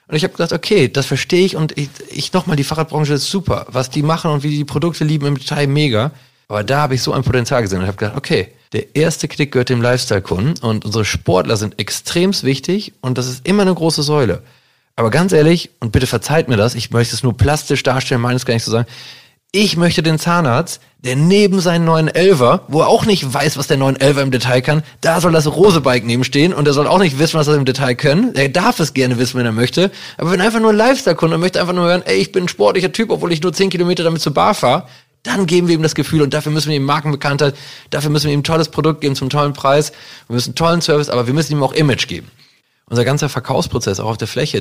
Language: German